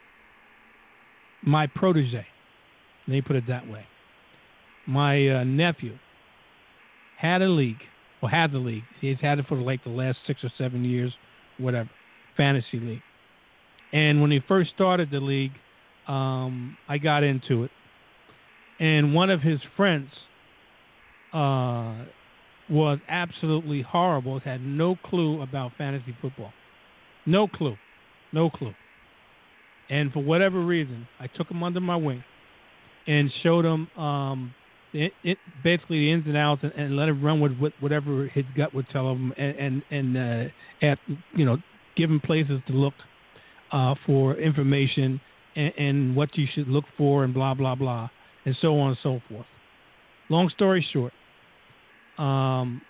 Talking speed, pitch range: 150 wpm, 130-155 Hz